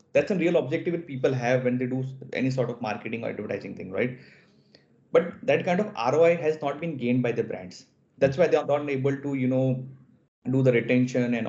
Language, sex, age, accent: English, male, 20-39, Indian